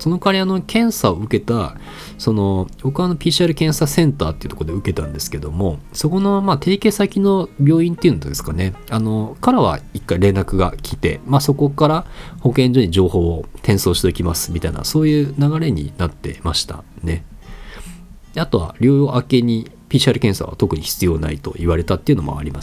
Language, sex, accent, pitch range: Japanese, male, native, 85-140 Hz